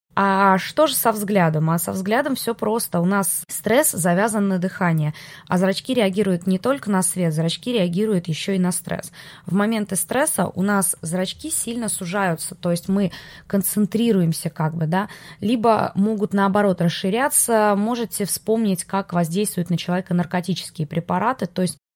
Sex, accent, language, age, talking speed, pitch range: female, native, Russian, 20-39, 160 wpm, 175-210 Hz